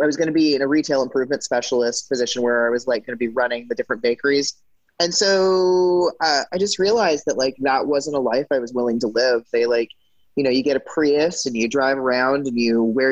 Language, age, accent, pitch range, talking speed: English, 20-39, American, 115-140 Hz, 245 wpm